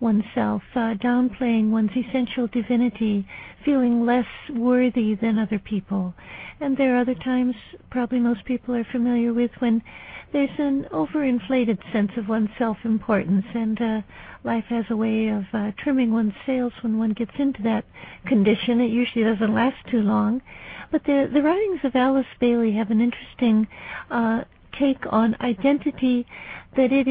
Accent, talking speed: American, 160 wpm